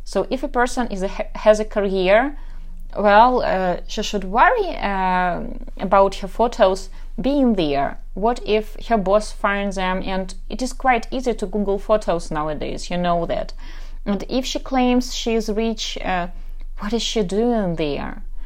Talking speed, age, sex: 165 wpm, 30-49, female